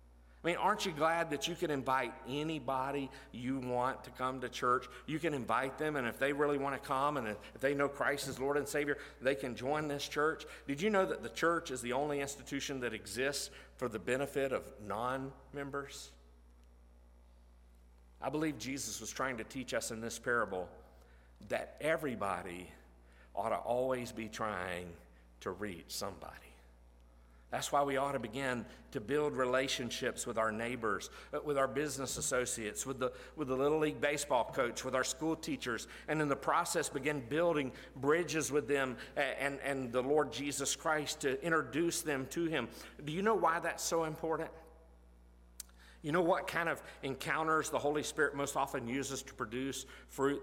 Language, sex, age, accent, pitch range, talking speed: English, male, 50-69, American, 105-145 Hz, 175 wpm